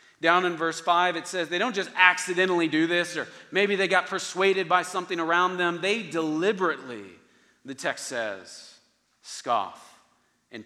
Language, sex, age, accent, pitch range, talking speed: English, male, 40-59, American, 140-190 Hz, 160 wpm